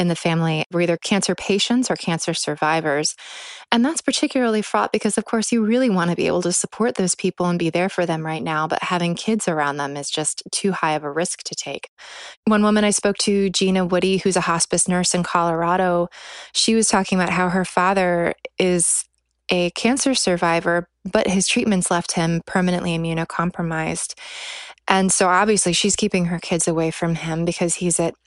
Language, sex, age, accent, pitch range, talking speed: English, female, 20-39, American, 170-210 Hz, 195 wpm